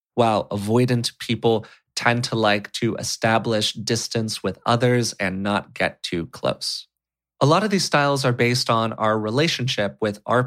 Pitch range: 110-130 Hz